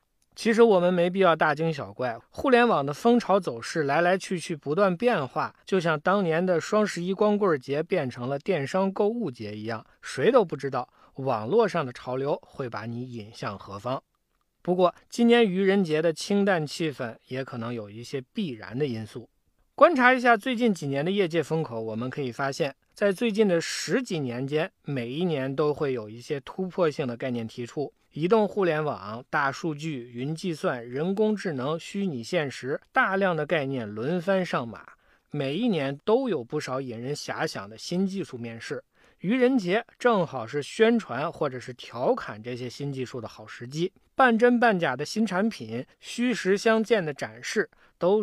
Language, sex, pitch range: Chinese, male, 125-195 Hz